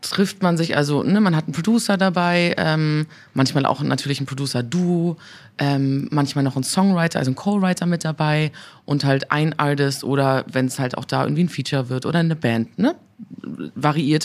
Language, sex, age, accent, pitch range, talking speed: German, female, 20-39, German, 140-170 Hz, 190 wpm